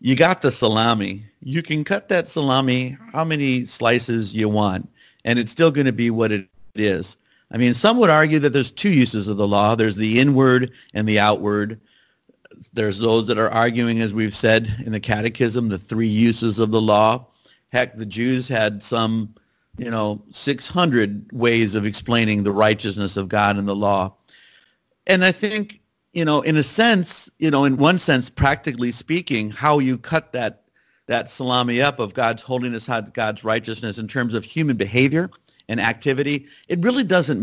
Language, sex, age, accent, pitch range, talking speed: English, male, 50-69, American, 110-140 Hz, 185 wpm